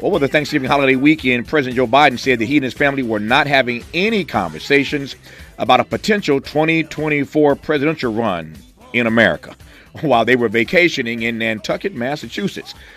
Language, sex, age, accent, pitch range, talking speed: English, male, 50-69, American, 110-140 Hz, 155 wpm